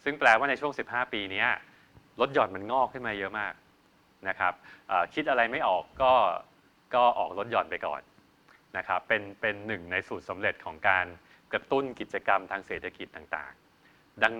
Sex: male